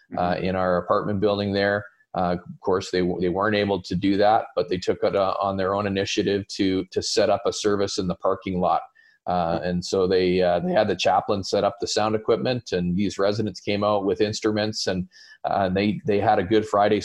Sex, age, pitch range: male, 30-49, 90-105 Hz